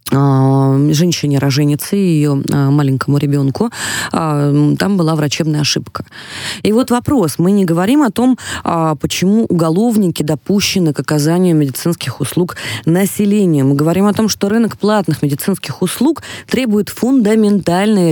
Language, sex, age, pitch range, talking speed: Russian, female, 20-39, 135-175 Hz, 120 wpm